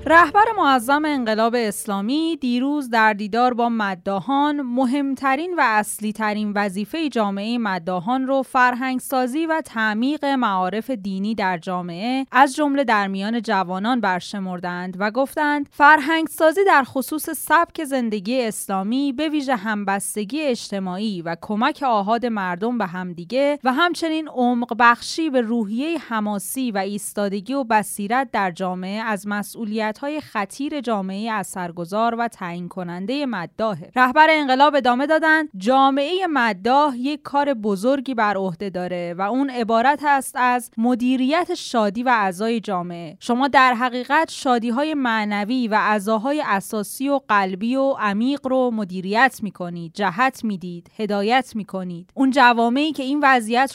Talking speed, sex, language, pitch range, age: 140 wpm, female, Persian, 210-275 Hz, 20-39